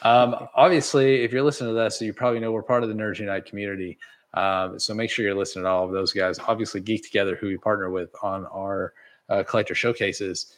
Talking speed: 225 wpm